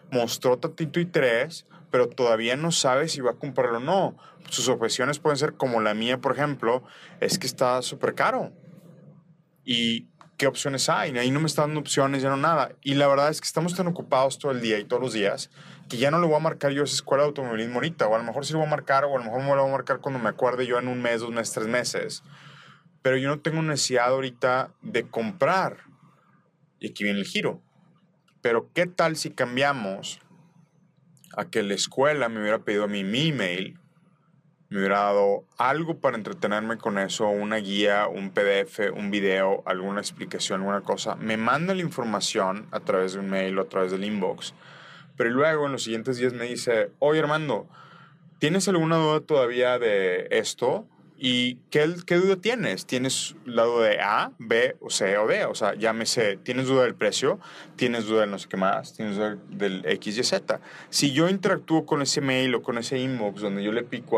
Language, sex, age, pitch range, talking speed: Spanish, male, 30-49, 115-165 Hz, 210 wpm